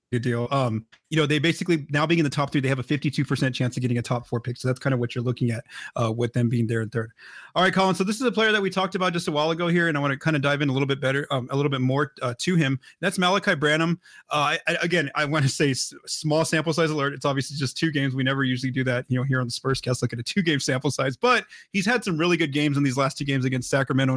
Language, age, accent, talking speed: English, 30-49, American, 325 wpm